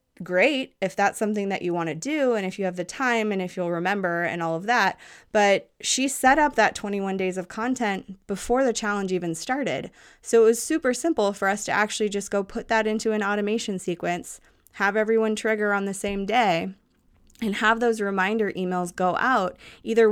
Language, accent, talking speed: English, American, 205 wpm